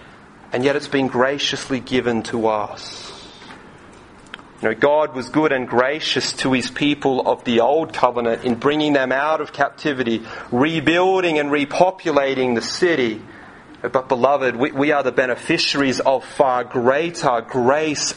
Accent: Australian